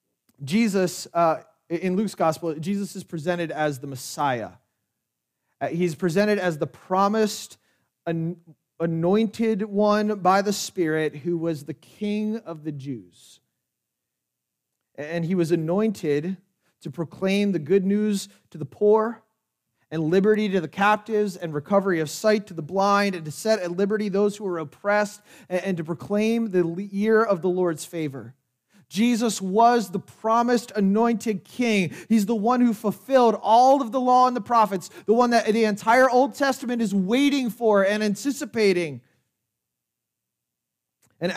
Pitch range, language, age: 170-225 Hz, English, 30-49